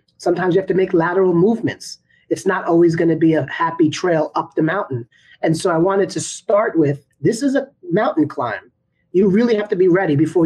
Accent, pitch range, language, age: American, 155-185 Hz, English, 30-49